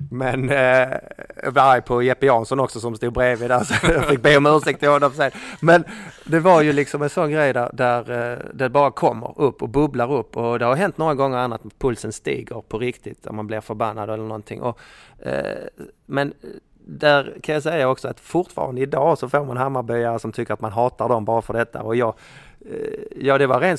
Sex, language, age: male, Swedish, 30-49